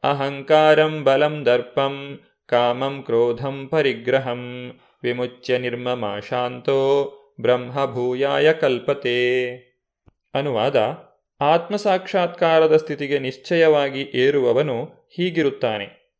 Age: 30-49